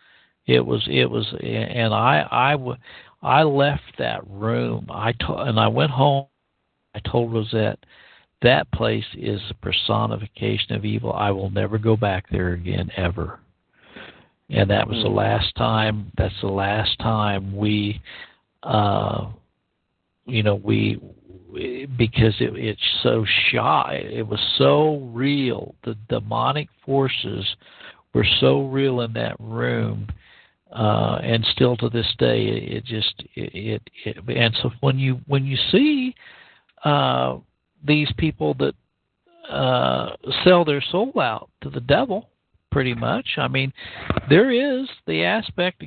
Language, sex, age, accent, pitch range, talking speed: English, male, 60-79, American, 100-135 Hz, 140 wpm